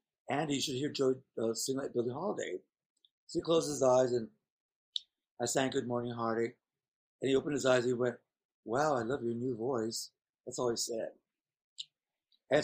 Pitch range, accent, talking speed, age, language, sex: 130-180 Hz, American, 190 wpm, 50-69, English, male